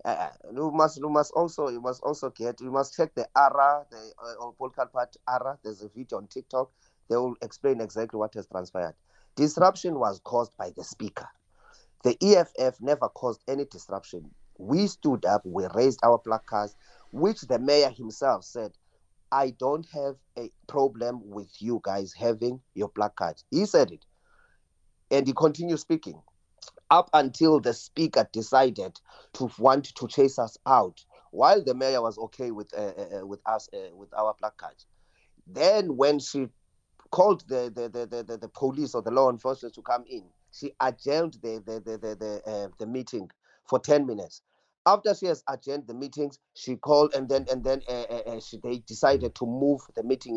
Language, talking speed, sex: English, 185 wpm, male